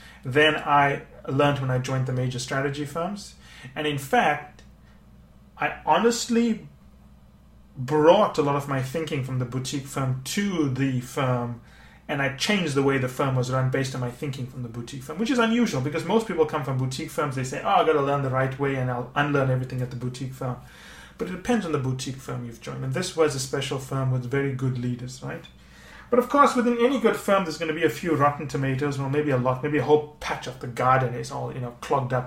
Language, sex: English, male